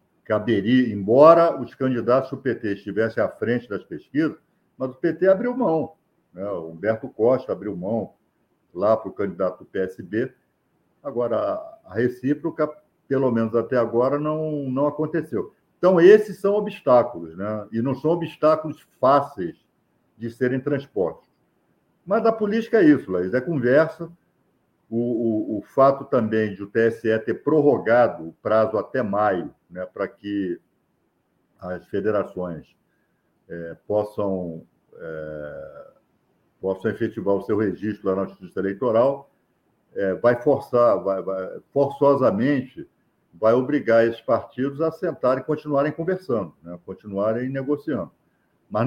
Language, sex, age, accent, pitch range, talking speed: Portuguese, male, 50-69, Brazilian, 105-155 Hz, 135 wpm